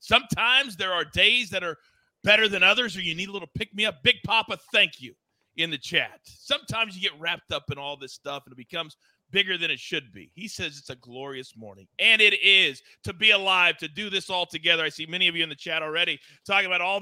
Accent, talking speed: American, 240 wpm